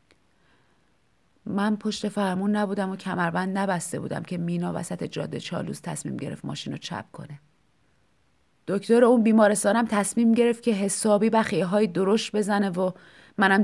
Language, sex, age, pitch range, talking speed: Persian, female, 30-49, 190-235 Hz, 140 wpm